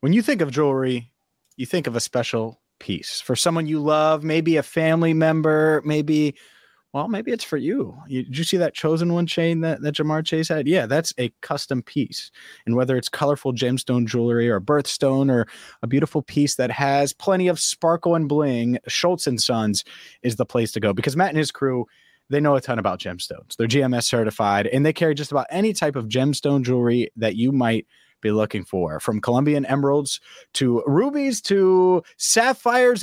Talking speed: 195 wpm